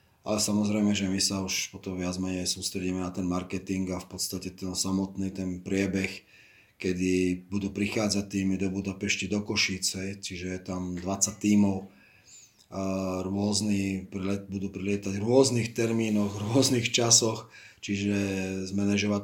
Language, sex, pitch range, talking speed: Slovak, male, 95-100 Hz, 135 wpm